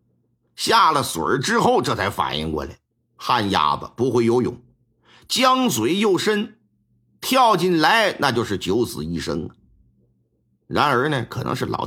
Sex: male